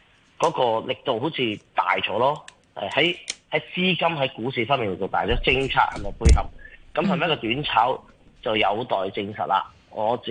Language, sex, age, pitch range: Chinese, male, 30-49, 95-145 Hz